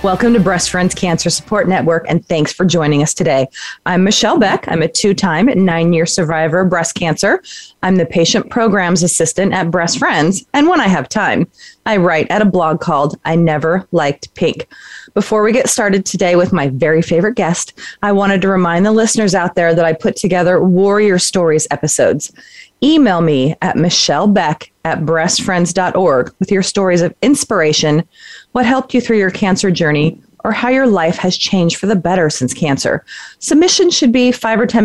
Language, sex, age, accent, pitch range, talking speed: English, female, 30-49, American, 165-210 Hz, 185 wpm